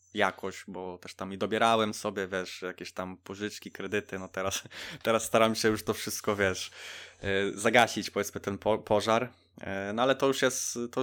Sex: male